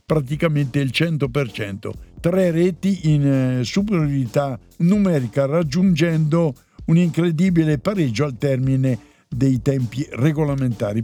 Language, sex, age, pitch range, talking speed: Italian, male, 60-79, 130-165 Hz, 90 wpm